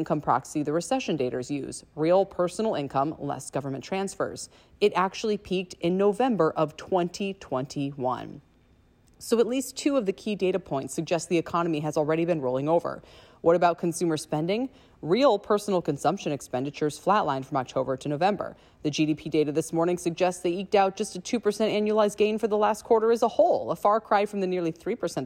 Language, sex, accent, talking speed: English, female, American, 185 wpm